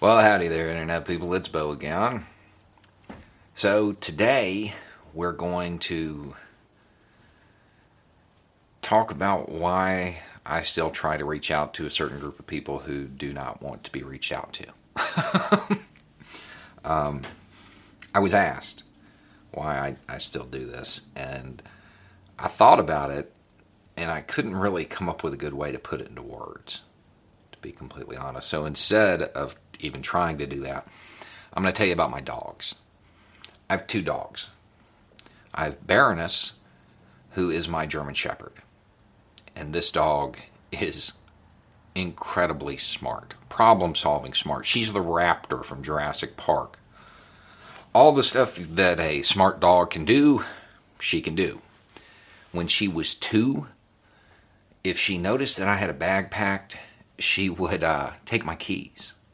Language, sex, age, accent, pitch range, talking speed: English, male, 40-59, American, 75-100 Hz, 145 wpm